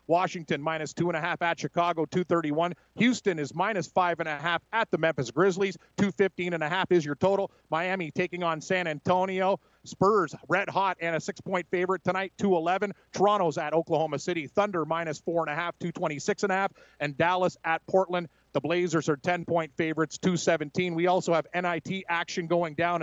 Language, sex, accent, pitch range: English, male, American, 165-185 Hz